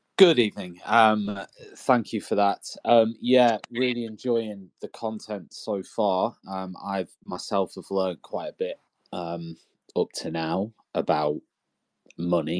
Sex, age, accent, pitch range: male, 20-39, British, 90-110 Hz